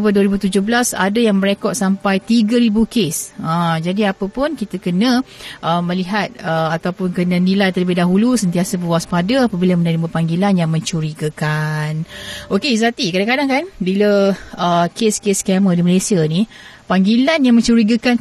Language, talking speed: Malay, 140 wpm